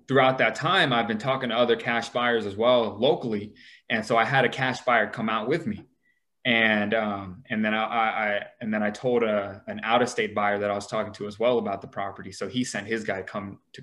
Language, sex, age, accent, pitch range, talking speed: English, male, 20-39, American, 105-125 Hz, 250 wpm